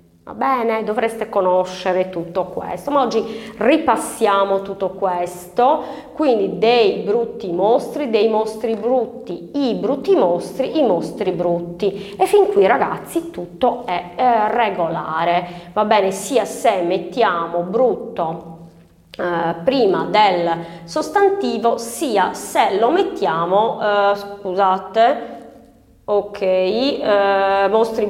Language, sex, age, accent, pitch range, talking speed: Italian, female, 30-49, native, 180-250 Hz, 110 wpm